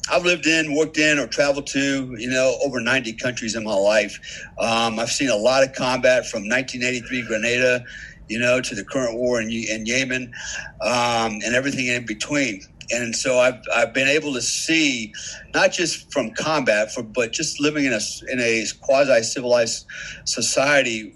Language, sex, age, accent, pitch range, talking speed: English, male, 50-69, American, 120-145 Hz, 185 wpm